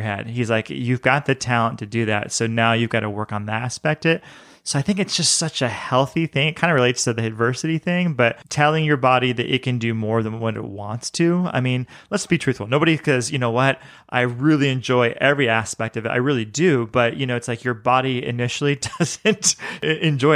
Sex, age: male, 30-49